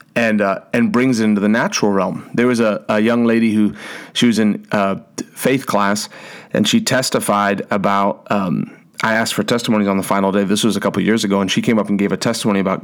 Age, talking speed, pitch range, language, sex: 30-49, 240 wpm, 105-120 Hz, English, male